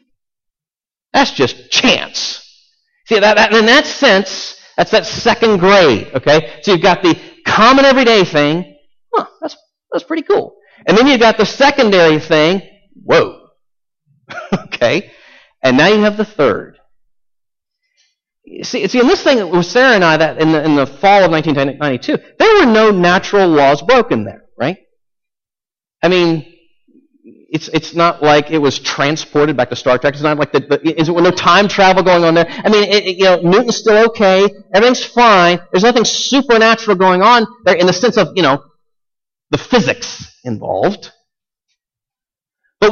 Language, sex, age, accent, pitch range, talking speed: English, male, 40-59, American, 155-235 Hz, 170 wpm